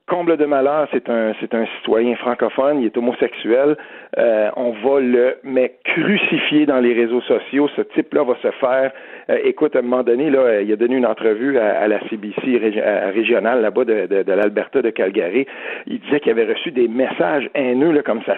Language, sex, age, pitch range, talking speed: French, male, 50-69, 125-205 Hz, 200 wpm